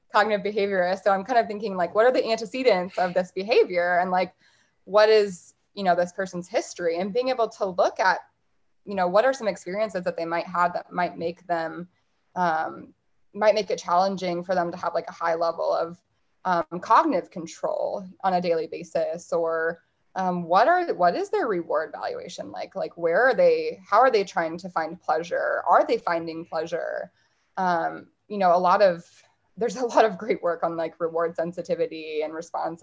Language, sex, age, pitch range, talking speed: English, female, 20-39, 170-220 Hz, 195 wpm